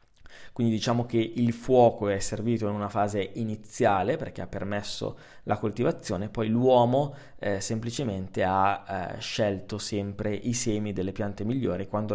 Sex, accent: male, native